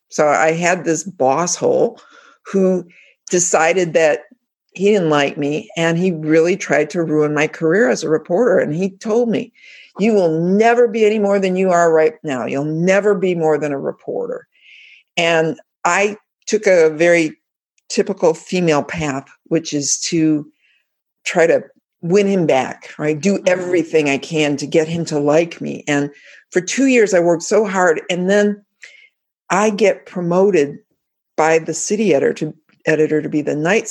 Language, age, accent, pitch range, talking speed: English, 50-69, American, 150-195 Hz, 170 wpm